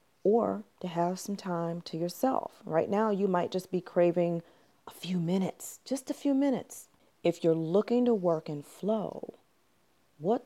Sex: female